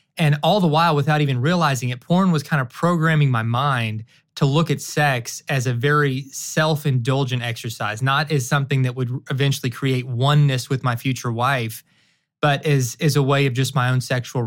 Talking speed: 190 wpm